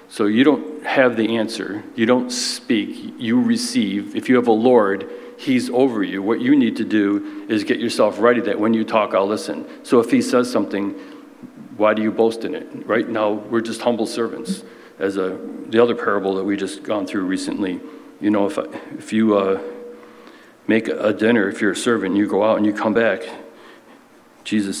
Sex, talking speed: male, 200 wpm